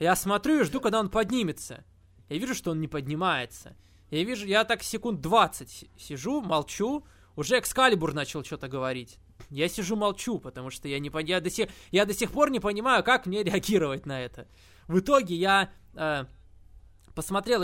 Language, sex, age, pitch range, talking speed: Russian, male, 20-39, 150-210 Hz, 175 wpm